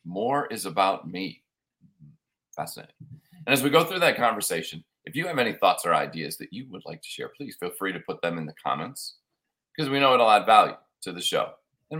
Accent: American